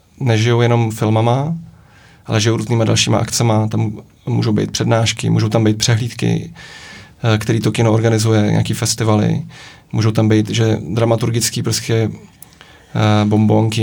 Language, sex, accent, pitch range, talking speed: Czech, male, native, 110-120 Hz, 125 wpm